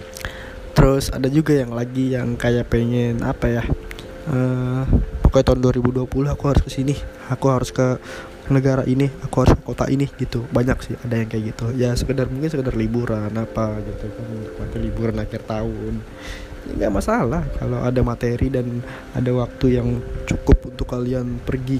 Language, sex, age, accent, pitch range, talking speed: Indonesian, male, 20-39, native, 115-130 Hz, 160 wpm